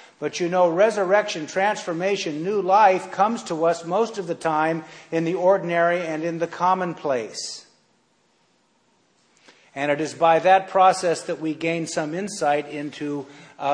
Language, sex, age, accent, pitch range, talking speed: English, male, 50-69, American, 145-180 Hz, 150 wpm